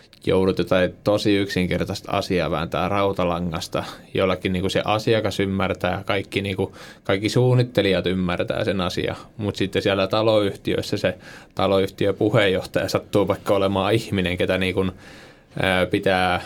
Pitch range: 95-105 Hz